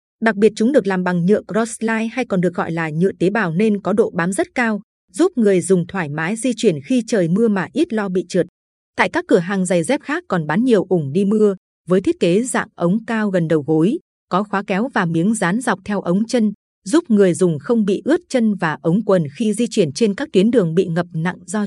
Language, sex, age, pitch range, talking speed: Vietnamese, female, 20-39, 180-225 Hz, 250 wpm